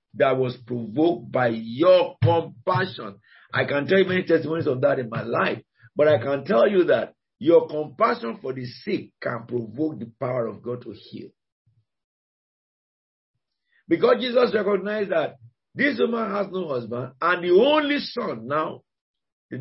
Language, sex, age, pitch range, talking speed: English, male, 50-69, 120-170 Hz, 155 wpm